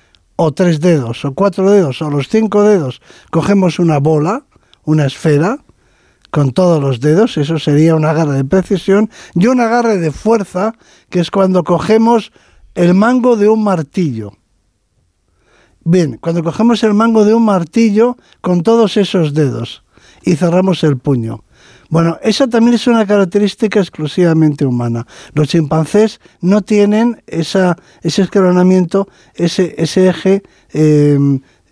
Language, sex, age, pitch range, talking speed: Spanish, male, 60-79, 155-210 Hz, 140 wpm